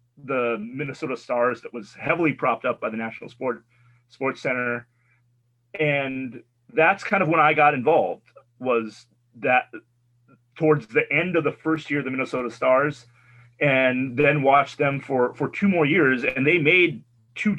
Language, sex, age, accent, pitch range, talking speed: English, male, 30-49, American, 120-150 Hz, 165 wpm